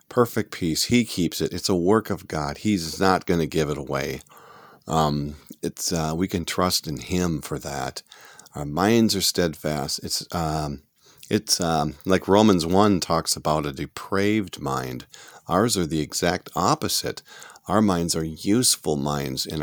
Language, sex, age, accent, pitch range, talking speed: English, male, 40-59, American, 80-100 Hz, 165 wpm